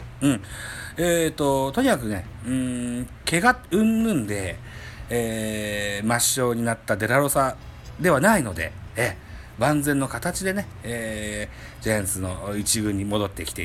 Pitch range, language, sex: 105-140 Hz, Japanese, male